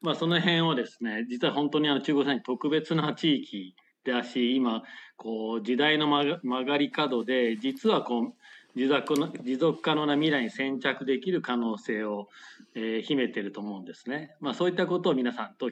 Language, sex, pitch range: Japanese, male, 120-155 Hz